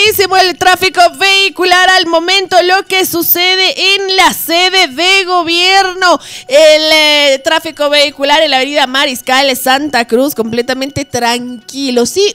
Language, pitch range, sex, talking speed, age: Spanish, 275-355 Hz, female, 125 wpm, 20-39